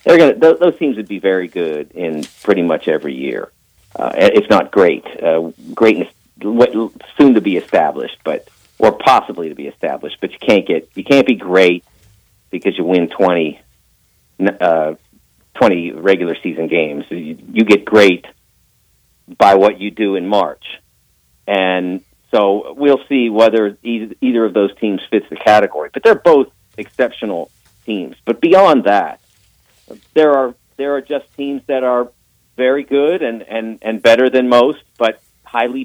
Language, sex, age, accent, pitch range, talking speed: English, male, 50-69, American, 100-150 Hz, 160 wpm